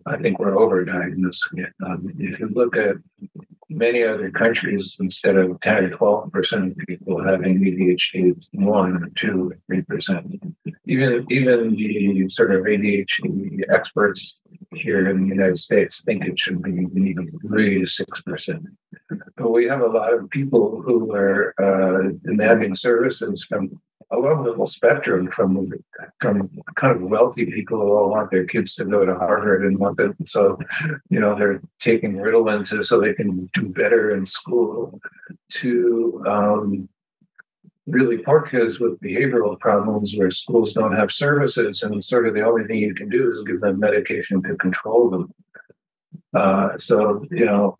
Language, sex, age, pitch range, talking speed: English, male, 60-79, 95-140 Hz, 160 wpm